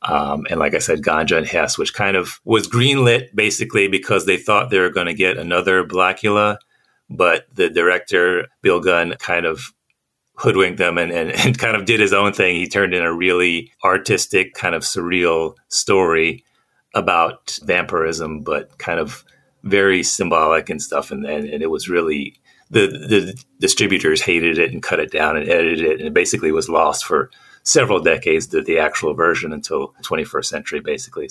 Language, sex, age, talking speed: English, male, 40-59, 180 wpm